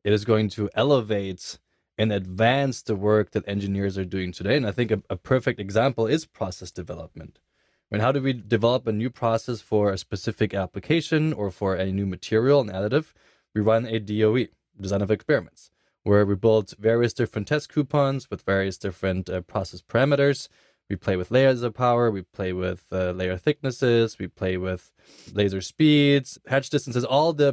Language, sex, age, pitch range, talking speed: English, male, 20-39, 100-120 Hz, 185 wpm